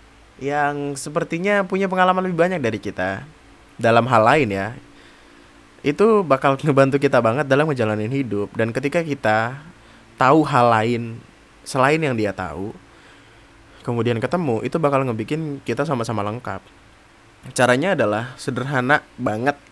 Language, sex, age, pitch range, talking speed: Indonesian, male, 20-39, 110-140 Hz, 130 wpm